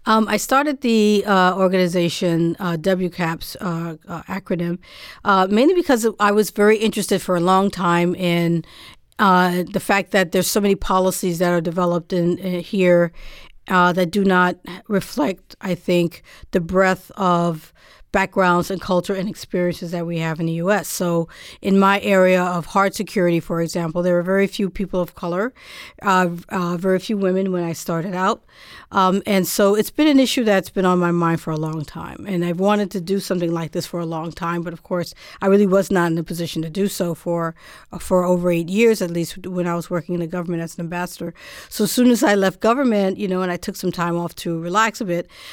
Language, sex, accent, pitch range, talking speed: English, female, American, 175-200 Hz, 210 wpm